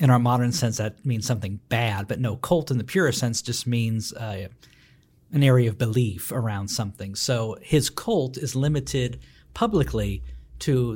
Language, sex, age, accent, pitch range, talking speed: English, male, 50-69, American, 110-140 Hz, 170 wpm